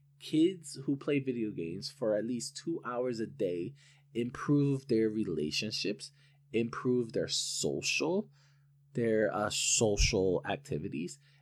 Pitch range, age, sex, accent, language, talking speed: 115-140 Hz, 20-39, male, American, English, 115 wpm